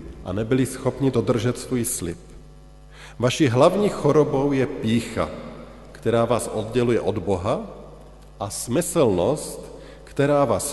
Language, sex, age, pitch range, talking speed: Slovak, male, 50-69, 110-150 Hz, 110 wpm